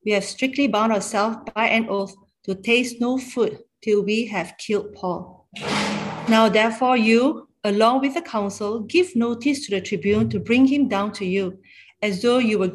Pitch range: 195-235 Hz